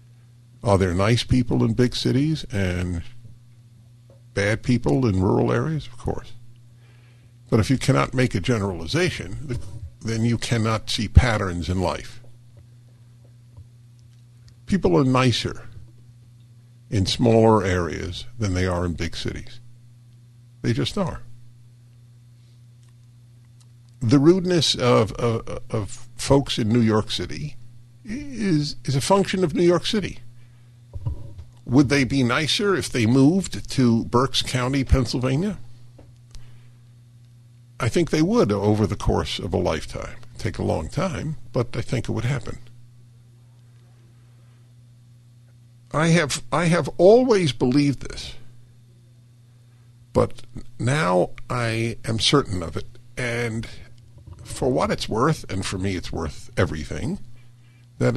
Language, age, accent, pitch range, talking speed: English, 50-69, American, 115-125 Hz, 125 wpm